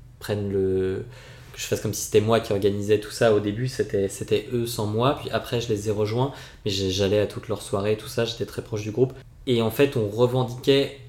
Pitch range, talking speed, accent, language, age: 105-125 Hz, 240 wpm, French, French, 20-39